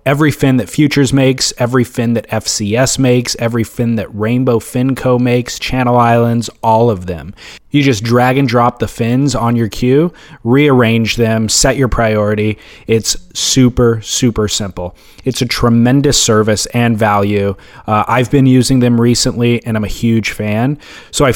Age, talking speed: 20-39, 165 wpm